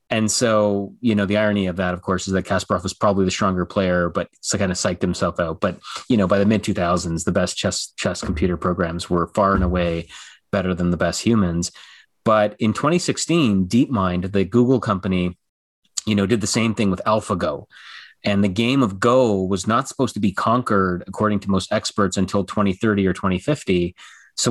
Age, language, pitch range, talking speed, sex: 30-49, English, 95-115 Hz, 200 wpm, male